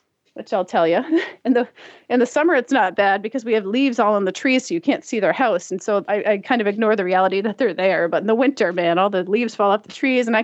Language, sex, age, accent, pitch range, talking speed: English, female, 30-49, American, 200-270 Hz, 300 wpm